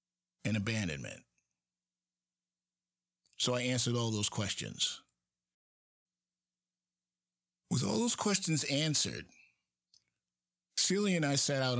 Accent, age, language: American, 50-69, English